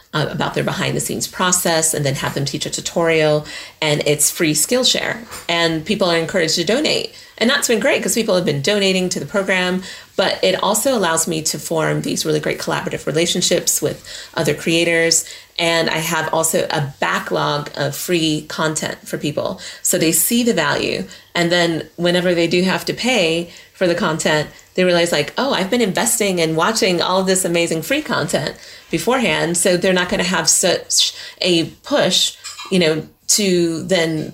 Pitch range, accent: 155-185 Hz, American